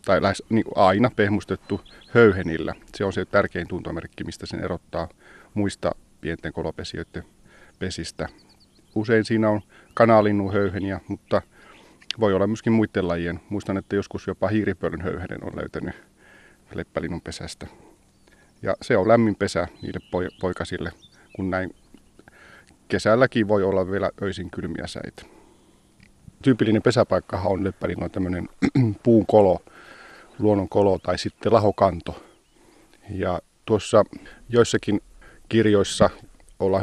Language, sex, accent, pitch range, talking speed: Finnish, male, native, 90-110 Hz, 115 wpm